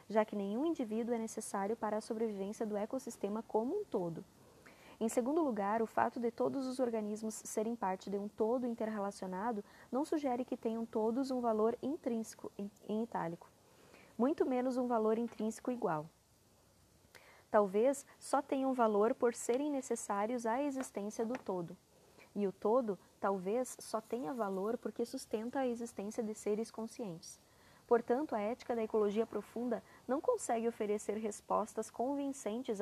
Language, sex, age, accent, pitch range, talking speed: Portuguese, female, 20-39, Brazilian, 210-245 Hz, 150 wpm